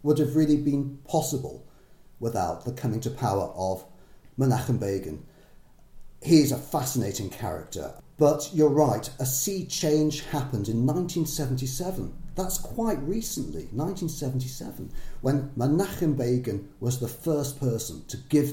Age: 40-59